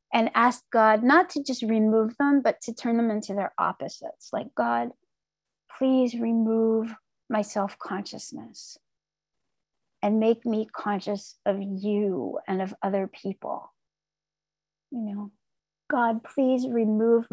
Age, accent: 40-59, American